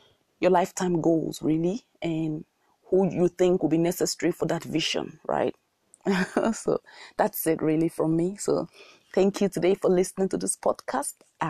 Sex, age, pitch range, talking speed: female, 30-49, 165-195 Hz, 160 wpm